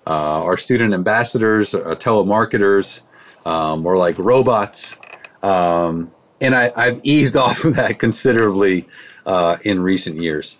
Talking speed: 130 wpm